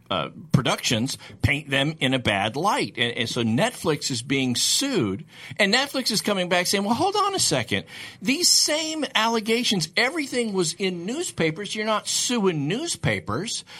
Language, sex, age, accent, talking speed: English, male, 50-69, American, 160 wpm